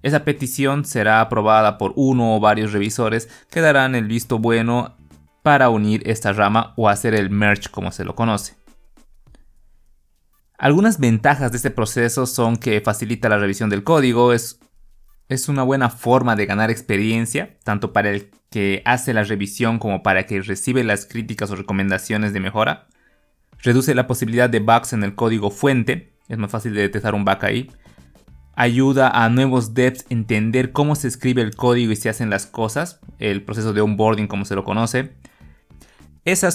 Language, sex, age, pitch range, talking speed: Spanish, male, 20-39, 105-130 Hz, 175 wpm